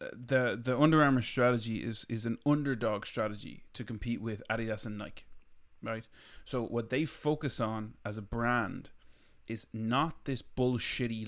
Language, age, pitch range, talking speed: English, 20-39, 110-125 Hz, 155 wpm